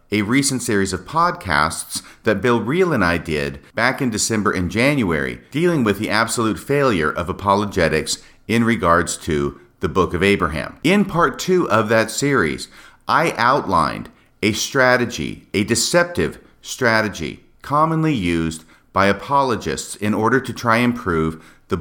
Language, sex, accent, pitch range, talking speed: English, male, American, 85-125 Hz, 150 wpm